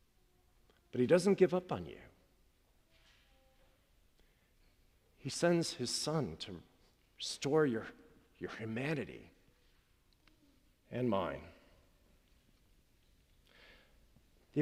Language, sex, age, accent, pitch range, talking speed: English, male, 50-69, American, 125-180 Hz, 80 wpm